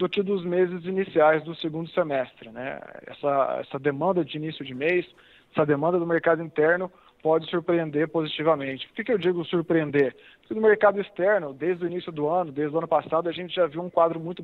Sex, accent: male, Brazilian